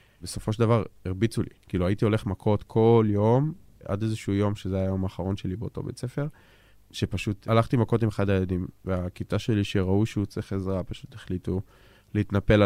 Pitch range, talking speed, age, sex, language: 95-115 Hz, 170 wpm, 20-39, male, Hebrew